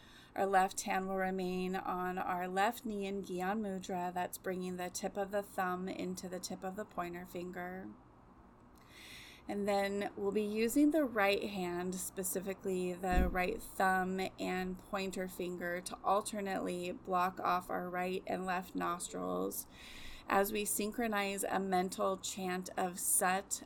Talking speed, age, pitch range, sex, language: 145 wpm, 30-49, 180-195 Hz, female, English